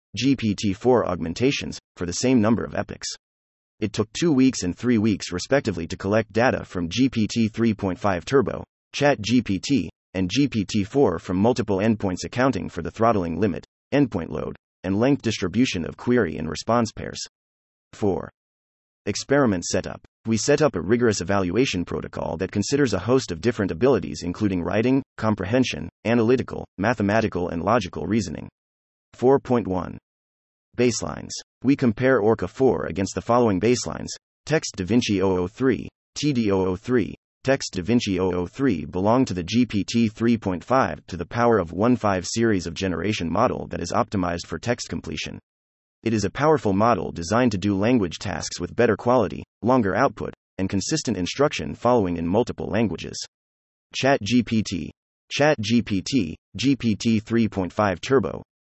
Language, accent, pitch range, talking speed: English, American, 90-120 Hz, 140 wpm